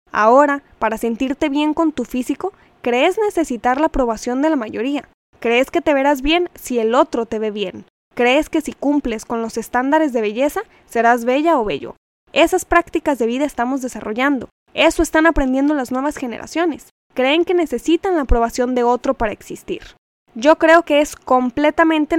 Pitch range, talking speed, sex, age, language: 235-300 Hz, 175 wpm, female, 10-29, Spanish